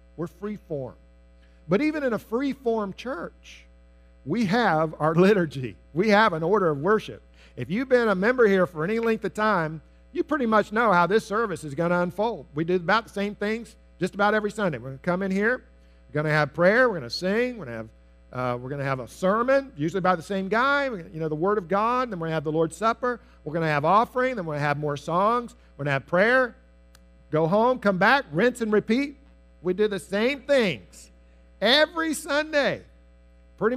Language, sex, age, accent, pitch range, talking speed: English, male, 50-69, American, 140-220 Hz, 230 wpm